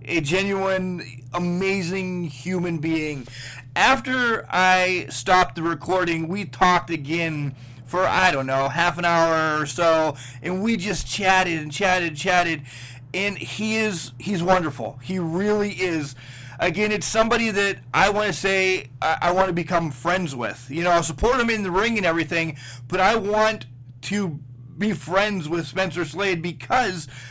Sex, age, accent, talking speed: male, 30-49, American, 155 wpm